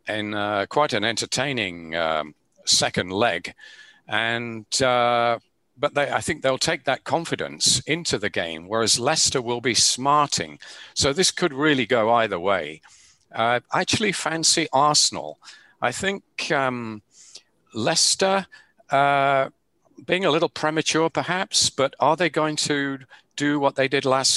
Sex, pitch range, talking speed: male, 105-145 Hz, 140 wpm